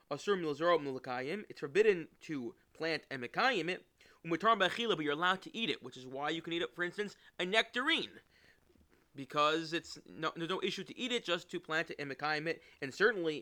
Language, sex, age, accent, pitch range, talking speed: English, male, 20-39, American, 145-190 Hz, 185 wpm